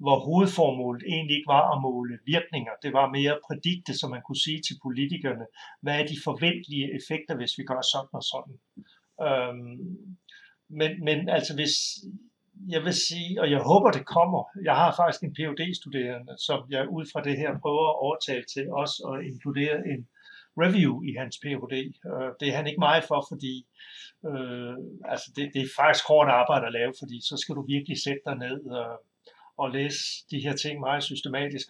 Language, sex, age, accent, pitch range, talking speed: Danish, male, 60-79, native, 135-170 Hz, 190 wpm